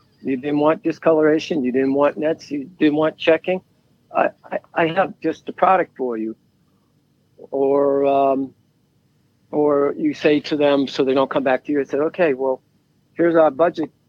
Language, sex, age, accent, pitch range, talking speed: English, male, 60-79, American, 130-155 Hz, 180 wpm